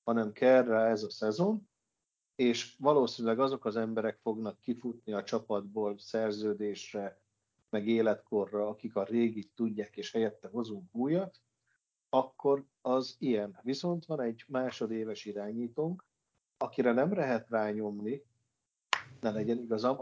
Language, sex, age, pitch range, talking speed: Hungarian, male, 50-69, 110-135 Hz, 125 wpm